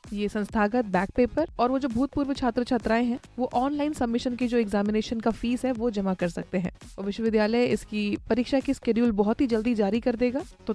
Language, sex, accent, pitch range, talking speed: Hindi, female, native, 220-255 Hz, 205 wpm